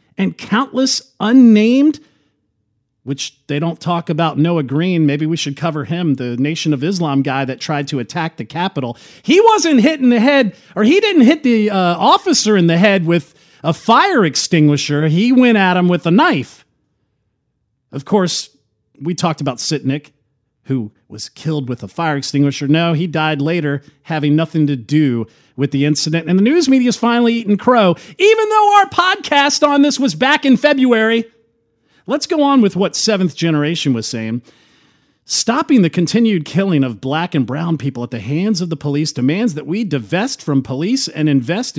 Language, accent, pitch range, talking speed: English, American, 145-230 Hz, 180 wpm